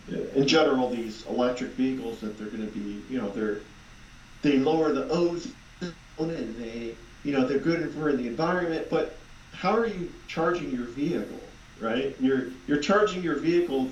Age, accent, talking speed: 40-59, American, 175 wpm